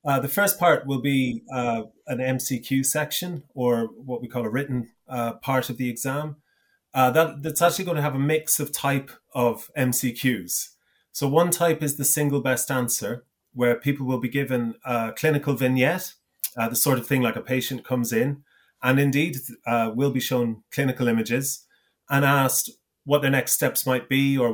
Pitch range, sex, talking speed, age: 115-140 Hz, male, 185 wpm, 30-49